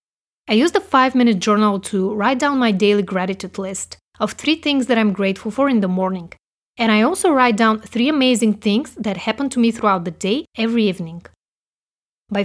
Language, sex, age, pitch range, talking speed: English, female, 30-49, 195-255 Hz, 195 wpm